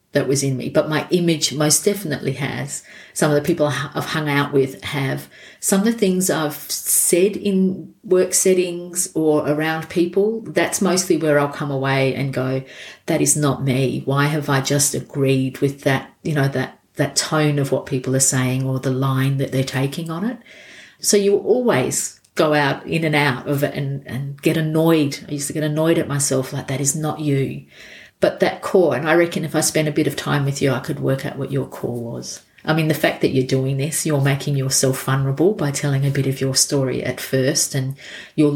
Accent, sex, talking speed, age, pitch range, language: Australian, female, 220 wpm, 50-69, 135-160 Hz, English